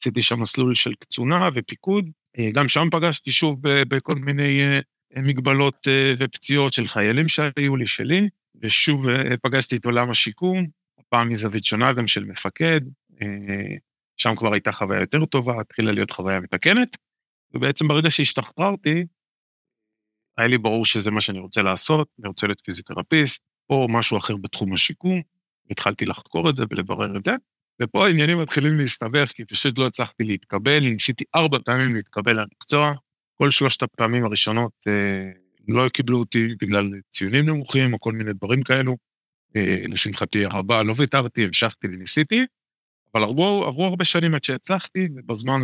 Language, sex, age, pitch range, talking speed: Hebrew, male, 50-69, 105-145 Hz, 150 wpm